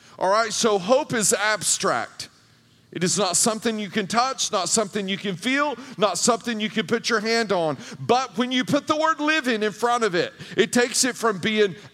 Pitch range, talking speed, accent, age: 185-245 Hz, 210 wpm, American, 40-59